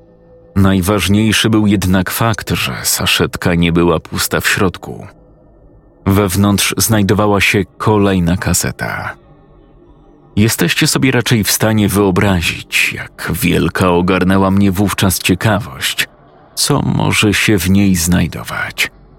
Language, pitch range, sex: Polish, 90-110 Hz, male